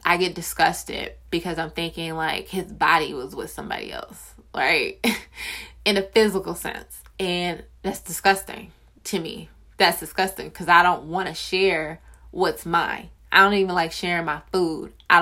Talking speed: 160 wpm